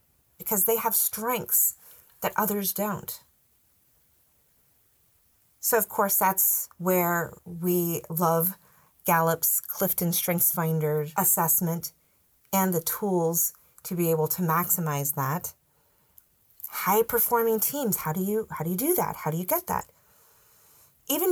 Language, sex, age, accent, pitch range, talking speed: English, female, 30-49, American, 165-220 Hz, 120 wpm